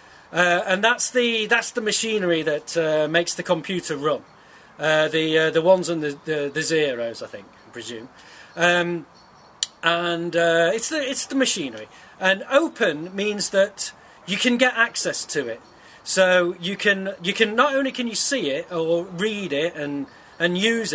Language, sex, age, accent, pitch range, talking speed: Italian, male, 40-59, British, 170-220 Hz, 180 wpm